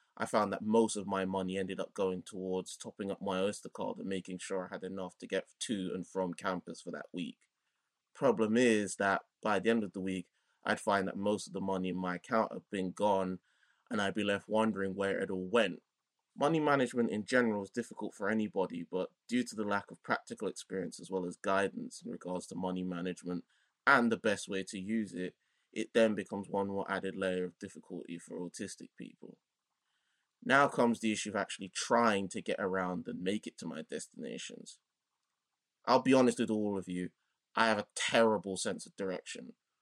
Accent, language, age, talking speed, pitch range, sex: British, English, 20-39, 205 wpm, 95-110 Hz, male